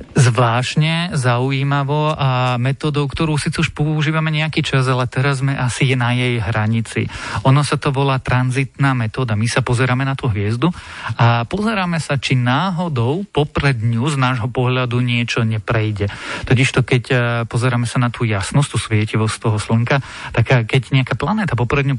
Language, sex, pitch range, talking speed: Slovak, male, 120-140 Hz, 155 wpm